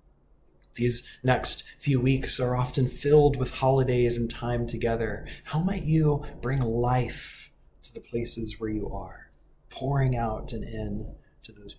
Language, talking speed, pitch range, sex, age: English, 150 wpm, 110-150 Hz, male, 20-39